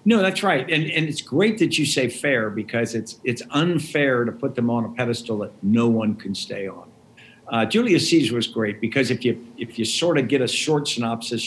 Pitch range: 110-130 Hz